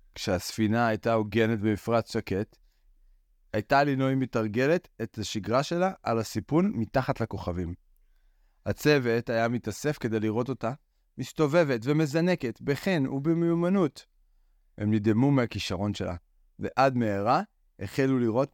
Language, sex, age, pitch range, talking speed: Hebrew, male, 30-49, 105-145 Hz, 105 wpm